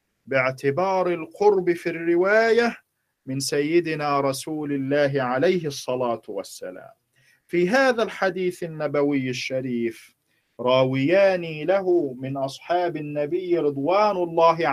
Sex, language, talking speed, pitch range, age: male, Arabic, 95 wpm, 135-175 Hz, 40-59